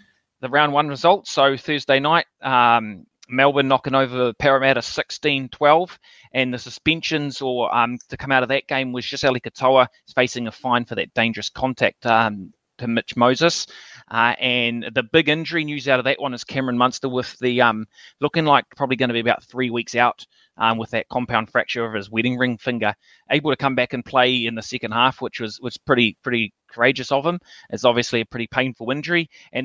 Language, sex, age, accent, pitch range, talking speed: English, male, 20-39, Australian, 115-140 Hz, 200 wpm